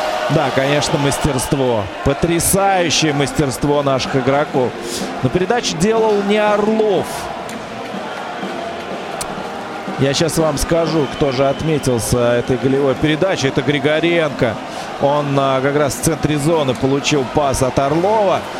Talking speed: 110 wpm